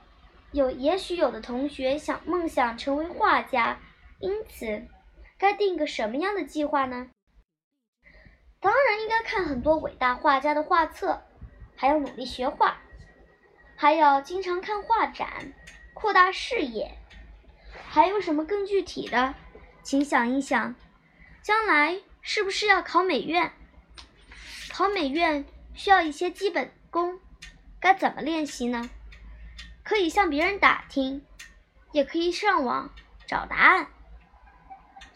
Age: 10-29